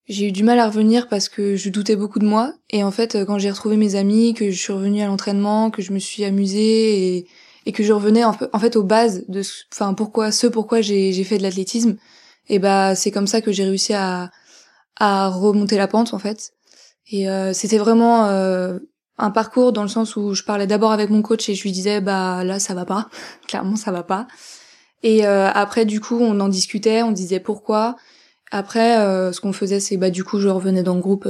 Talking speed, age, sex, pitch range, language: 245 wpm, 20-39, female, 195-220 Hz, French